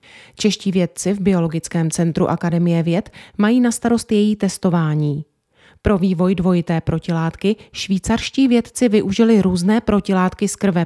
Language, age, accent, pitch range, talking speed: Czech, 30-49, native, 170-215 Hz, 125 wpm